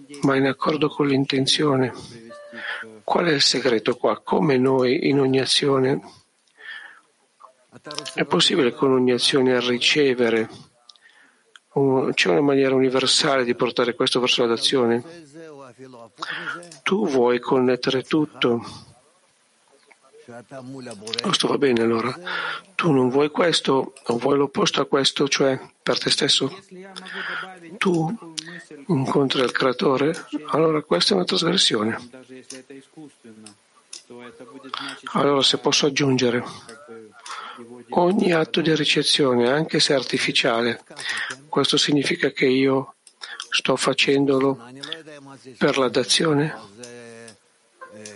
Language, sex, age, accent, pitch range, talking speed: Italian, male, 50-69, native, 120-150 Hz, 100 wpm